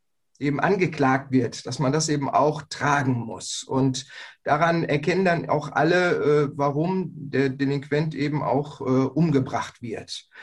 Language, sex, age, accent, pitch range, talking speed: German, male, 30-49, German, 145-185 Hz, 130 wpm